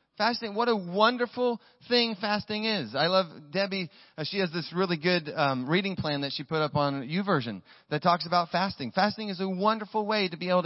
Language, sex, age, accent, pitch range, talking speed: English, male, 30-49, American, 135-190 Hz, 205 wpm